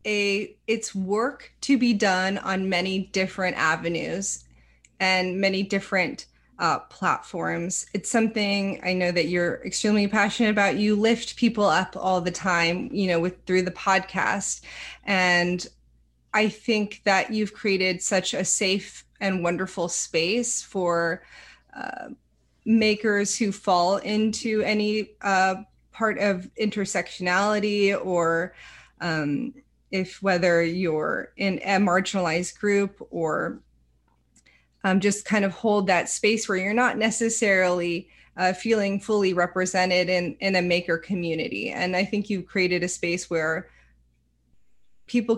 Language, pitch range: English, 180-215 Hz